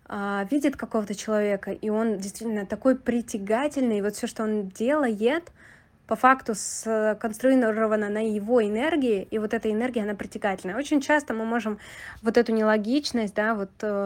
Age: 20-39